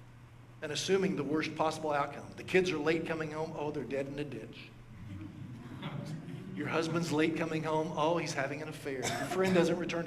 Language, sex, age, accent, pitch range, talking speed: English, male, 50-69, American, 130-165 Hz, 190 wpm